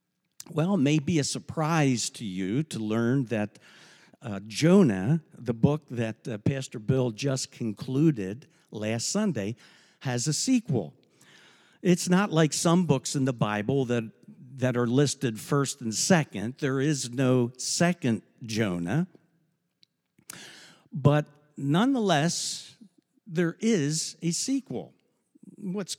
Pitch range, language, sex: 115-170 Hz, English, male